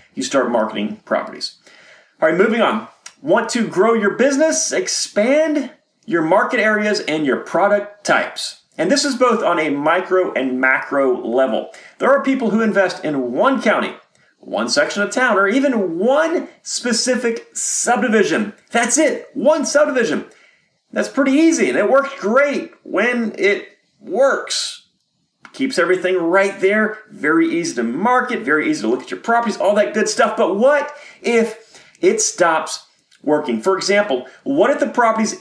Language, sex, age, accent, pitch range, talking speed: English, male, 40-59, American, 195-285 Hz, 160 wpm